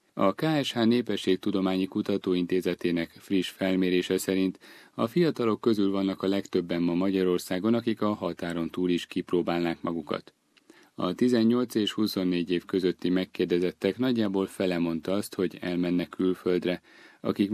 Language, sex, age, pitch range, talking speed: Hungarian, male, 30-49, 90-110 Hz, 125 wpm